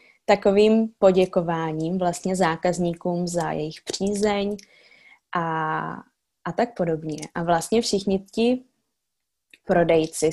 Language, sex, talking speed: Czech, female, 95 wpm